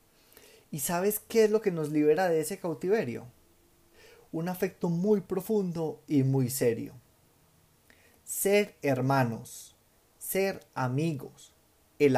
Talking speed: 115 wpm